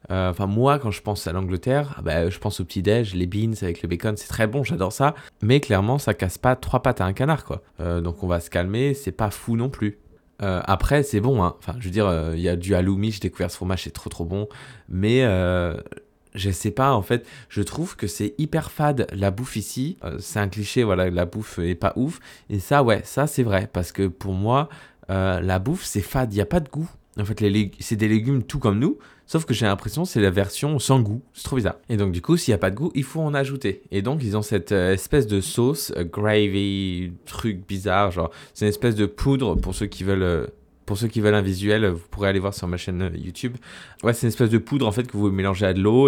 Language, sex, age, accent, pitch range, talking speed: French, male, 20-39, French, 95-130 Hz, 260 wpm